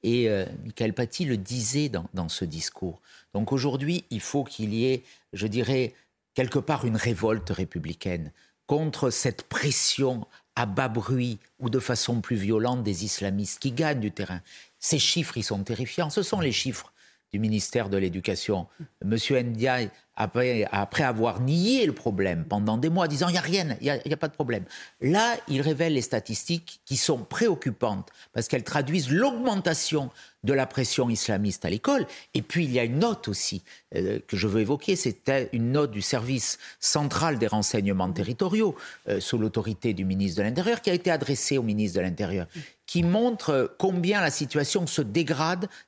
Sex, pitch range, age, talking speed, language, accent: male, 110-155 Hz, 50-69, 185 wpm, French, French